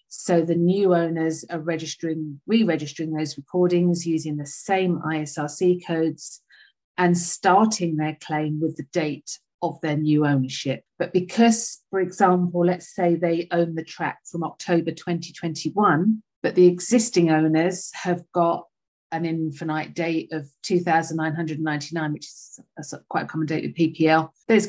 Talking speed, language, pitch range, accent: 150 wpm, English, 155-175 Hz, British